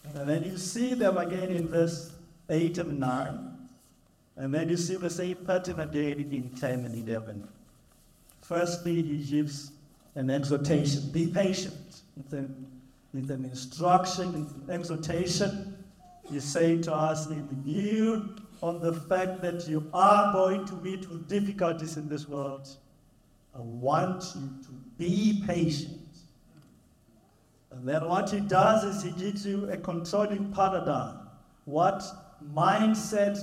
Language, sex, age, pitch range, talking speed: English, male, 60-79, 145-190 Hz, 140 wpm